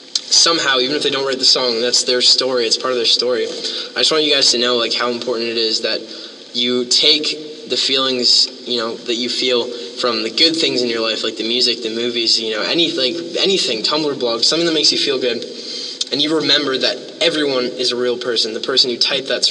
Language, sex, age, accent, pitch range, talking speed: English, male, 10-29, American, 120-145 Hz, 235 wpm